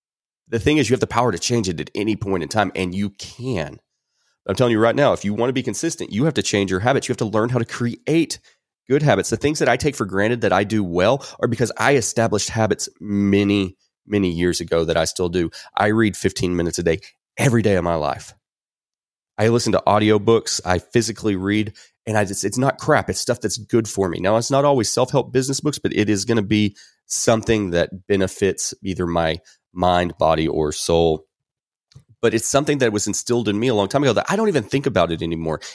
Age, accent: 30-49, American